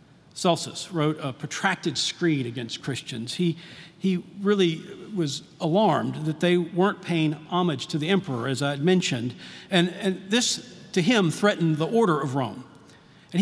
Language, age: English, 50-69